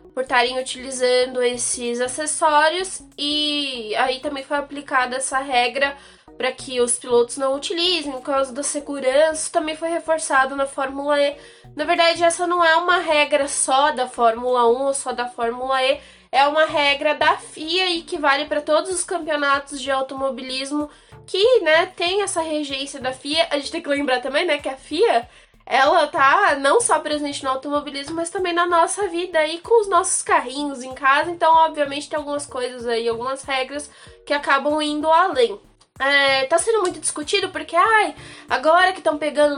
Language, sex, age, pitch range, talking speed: Portuguese, female, 10-29, 265-330 Hz, 175 wpm